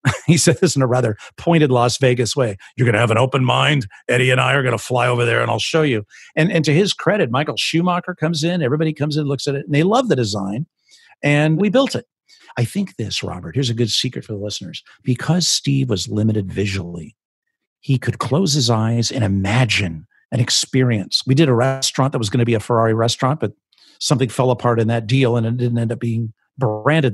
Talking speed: 230 wpm